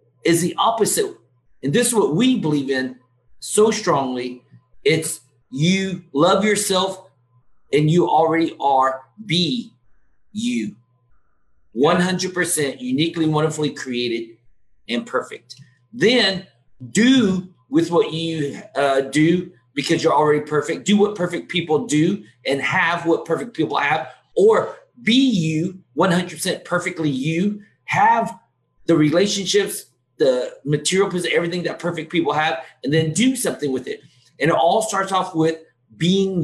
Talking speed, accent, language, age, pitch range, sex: 130 wpm, American, English, 40-59, 140-205 Hz, male